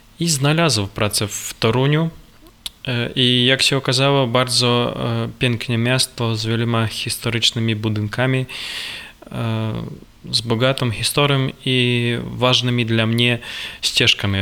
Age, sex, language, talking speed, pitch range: 20-39, male, Polish, 100 wpm, 110-130 Hz